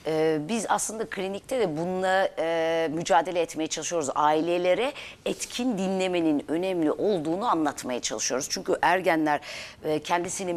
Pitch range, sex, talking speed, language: 165-210 Hz, female, 100 wpm, Turkish